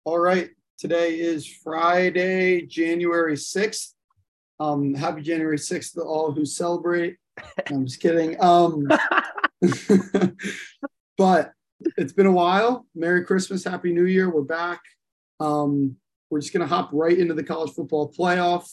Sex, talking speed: male, 140 wpm